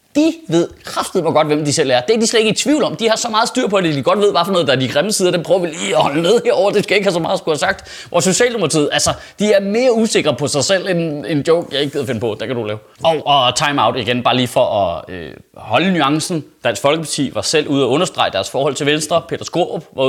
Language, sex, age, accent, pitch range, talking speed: Danish, male, 30-49, native, 150-230 Hz, 295 wpm